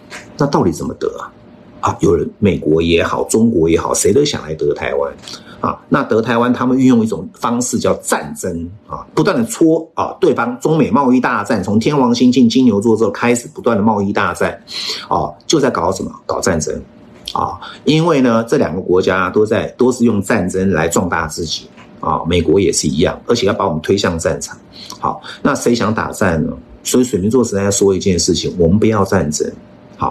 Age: 50-69